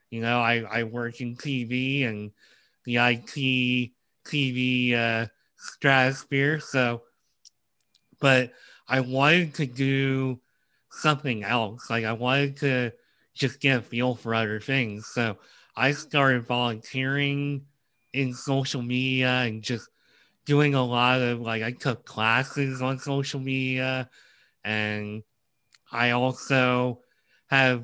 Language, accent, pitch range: English, American, 120-135 Hz